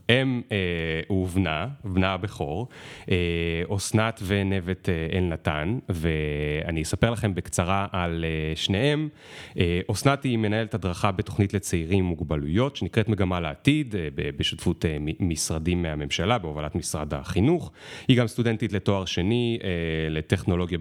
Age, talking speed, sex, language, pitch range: 30-49, 100 wpm, male, Hebrew, 85-115 Hz